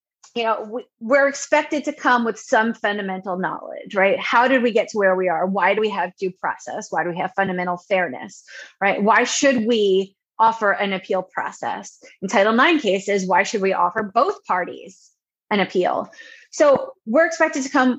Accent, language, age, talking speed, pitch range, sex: American, English, 30-49, 185 wpm, 195-255 Hz, female